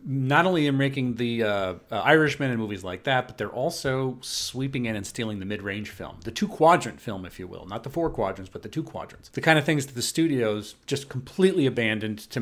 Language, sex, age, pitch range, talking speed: English, male, 40-59, 110-140 Hz, 230 wpm